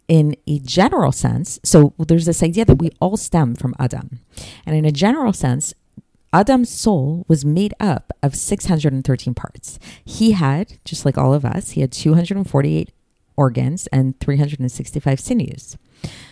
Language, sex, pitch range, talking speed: English, female, 135-180 Hz, 145 wpm